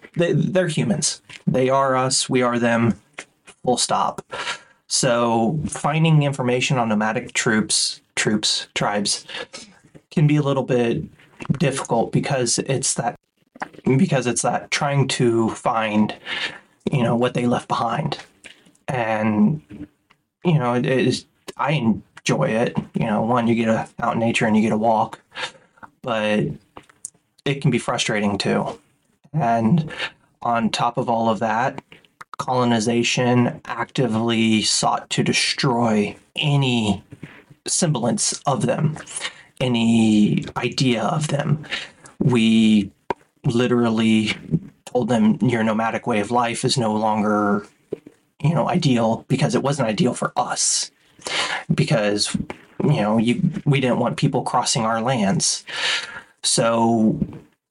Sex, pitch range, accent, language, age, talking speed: male, 110-140 Hz, American, English, 20-39, 125 wpm